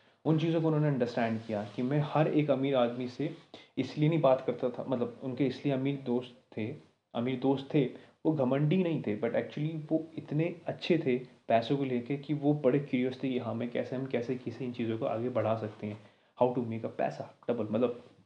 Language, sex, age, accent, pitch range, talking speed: Hindi, male, 30-49, native, 120-145 Hz, 215 wpm